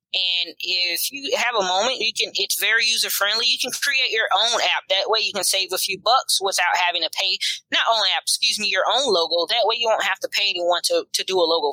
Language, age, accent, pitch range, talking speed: English, 20-39, American, 175-220 Hz, 255 wpm